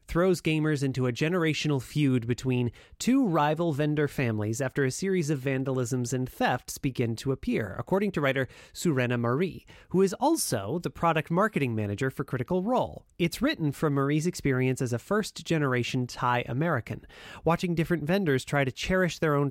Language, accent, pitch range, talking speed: English, American, 125-165 Hz, 165 wpm